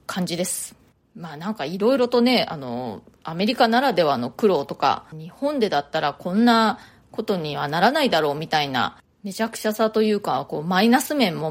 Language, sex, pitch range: Japanese, female, 180-245 Hz